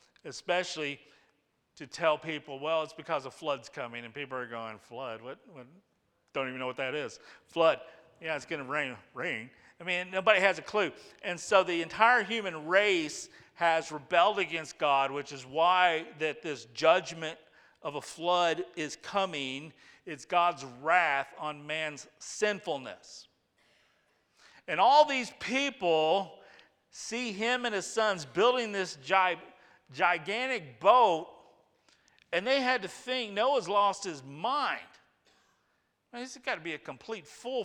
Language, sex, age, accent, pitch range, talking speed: English, male, 50-69, American, 145-195 Hz, 150 wpm